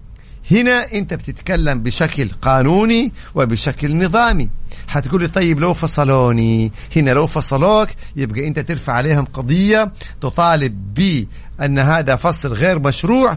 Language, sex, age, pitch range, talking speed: Arabic, male, 50-69, 140-185 Hz, 115 wpm